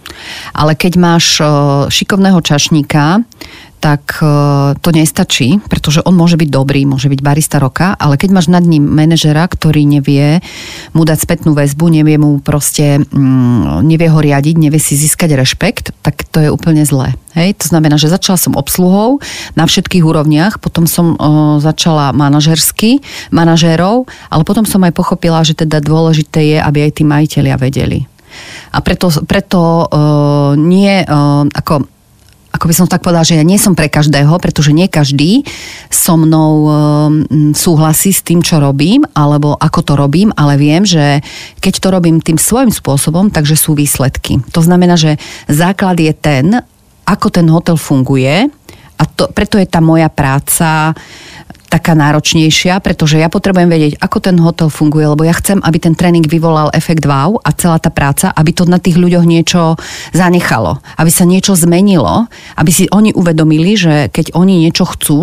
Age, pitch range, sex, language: 40-59, 150-175 Hz, female, Slovak